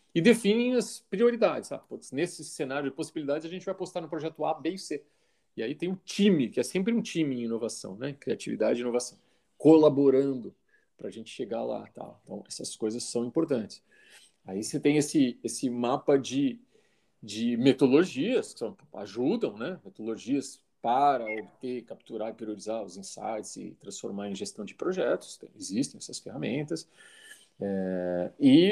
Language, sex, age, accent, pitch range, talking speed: Portuguese, male, 40-59, Brazilian, 120-180 Hz, 165 wpm